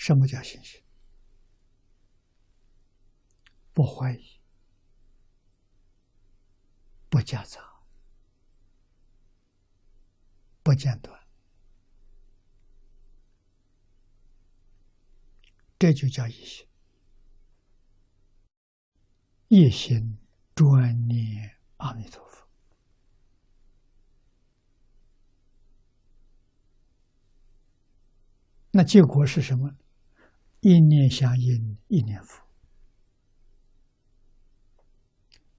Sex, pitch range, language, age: male, 95-125 Hz, Chinese, 60-79